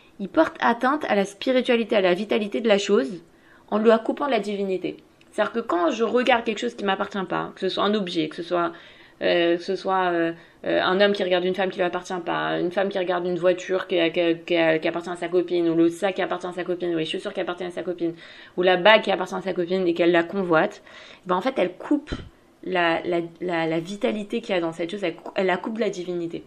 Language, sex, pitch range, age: French, female, 180-225 Hz, 20-39